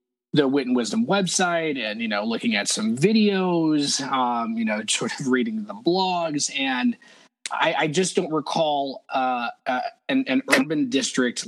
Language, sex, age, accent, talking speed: English, male, 20-39, American, 165 wpm